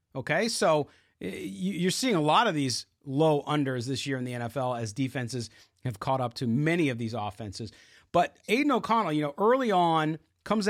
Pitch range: 135-175 Hz